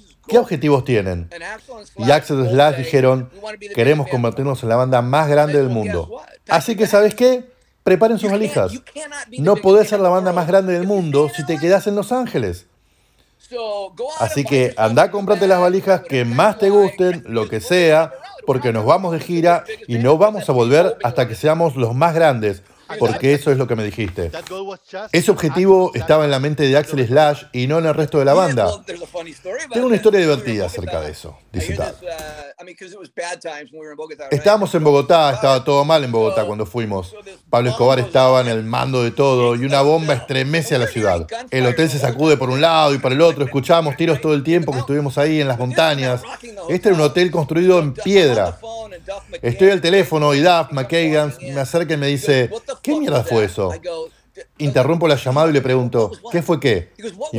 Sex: male